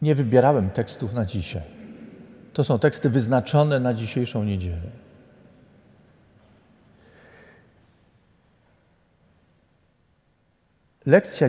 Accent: native